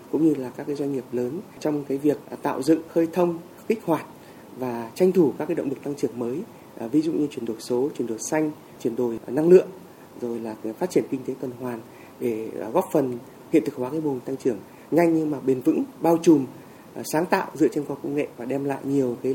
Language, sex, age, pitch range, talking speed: Vietnamese, male, 20-39, 130-160 Hz, 240 wpm